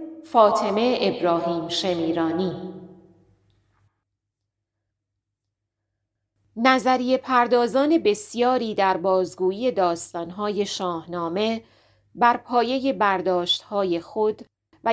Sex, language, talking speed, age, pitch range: female, Persian, 60 wpm, 30-49, 175-245 Hz